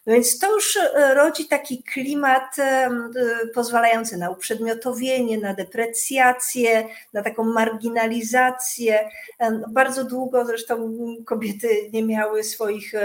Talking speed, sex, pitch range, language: 100 wpm, female, 215-245 Hz, Polish